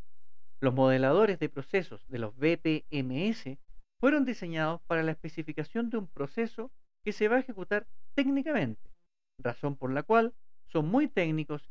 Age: 50-69